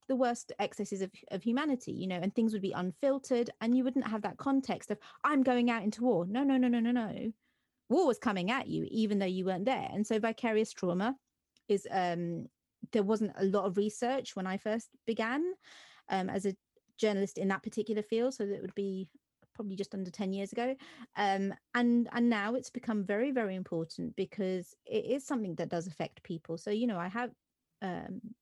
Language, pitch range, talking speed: English, 190-245 Hz, 210 wpm